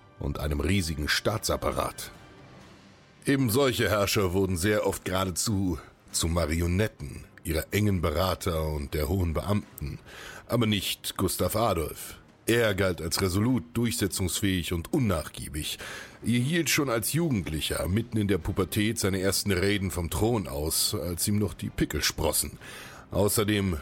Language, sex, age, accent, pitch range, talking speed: German, male, 60-79, German, 85-110 Hz, 135 wpm